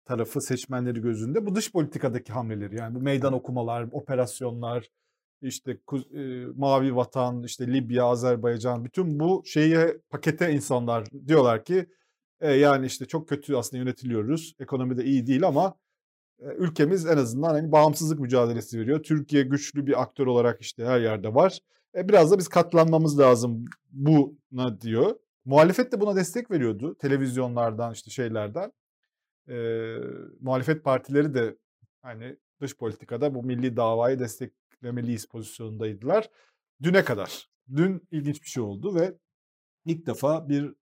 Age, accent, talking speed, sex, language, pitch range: 40-59, native, 140 wpm, male, Turkish, 120-150 Hz